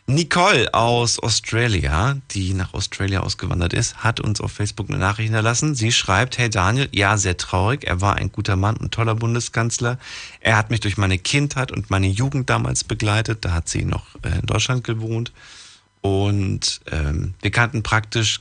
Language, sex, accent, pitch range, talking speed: German, male, German, 95-115 Hz, 175 wpm